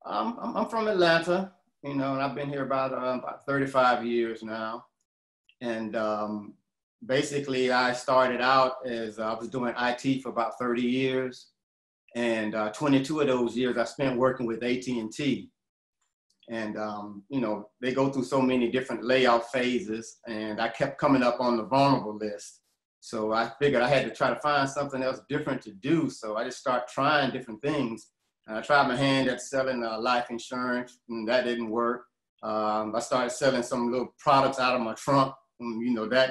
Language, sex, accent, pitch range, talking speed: English, male, American, 115-130 Hz, 185 wpm